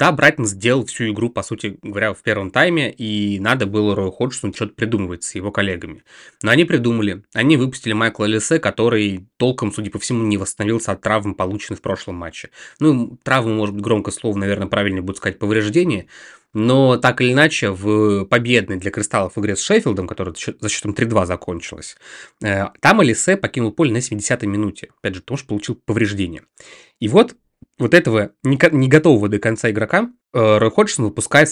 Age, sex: 20-39, male